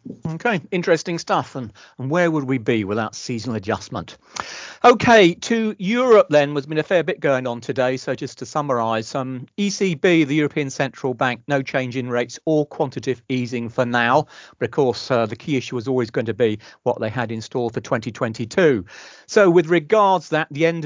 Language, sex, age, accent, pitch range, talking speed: English, male, 40-59, British, 120-150 Hz, 195 wpm